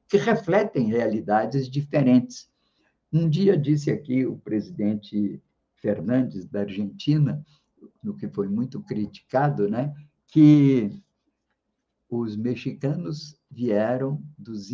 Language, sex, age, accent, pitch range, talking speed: Portuguese, male, 50-69, Brazilian, 115-160 Hz, 100 wpm